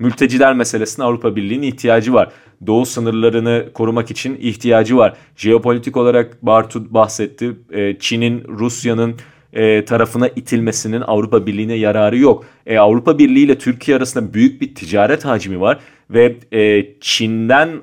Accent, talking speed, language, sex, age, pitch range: native, 130 wpm, Turkish, male, 40-59, 115-150 Hz